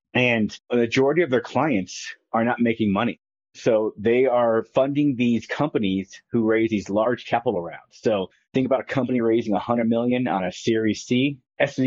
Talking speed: 180 wpm